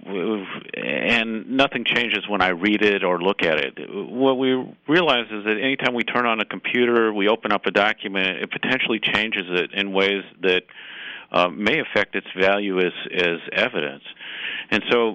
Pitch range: 100-125 Hz